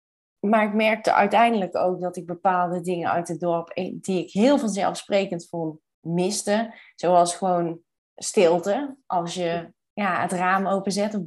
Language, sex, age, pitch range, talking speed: Dutch, female, 20-39, 180-220 Hz, 150 wpm